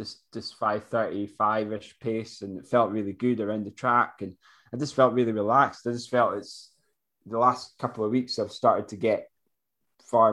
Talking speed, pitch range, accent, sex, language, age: 180 wpm, 100-125 Hz, British, male, English, 20-39